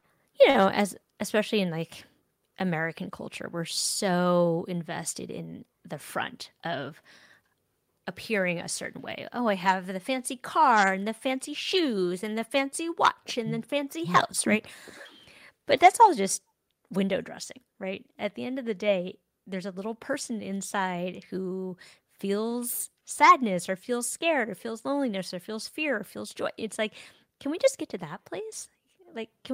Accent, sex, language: American, female, English